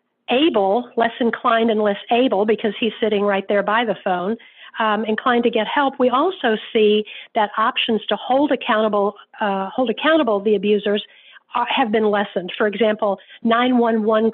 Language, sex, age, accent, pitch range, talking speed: English, female, 50-69, American, 205-240 Hz, 160 wpm